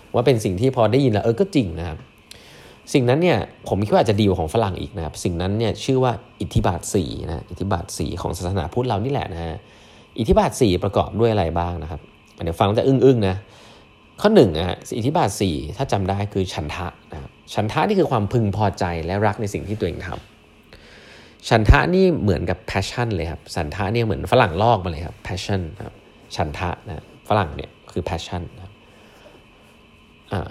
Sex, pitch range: male, 85-115 Hz